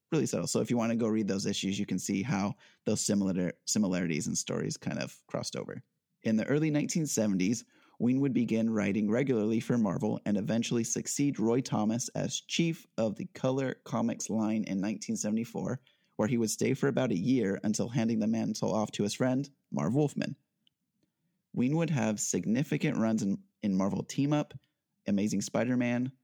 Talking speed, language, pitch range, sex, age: 180 wpm, English, 100-130 Hz, male, 30-49